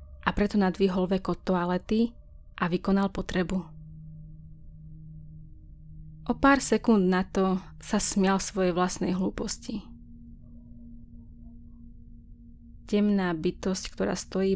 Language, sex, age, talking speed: Slovak, female, 20-39, 95 wpm